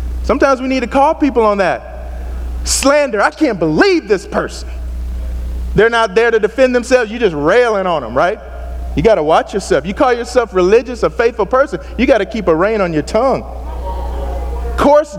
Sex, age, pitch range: male, 30-49, 195-275 Hz